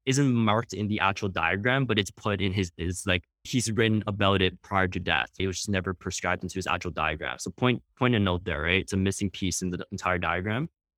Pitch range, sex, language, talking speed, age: 95-135 Hz, male, English, 240 wpm, 20-39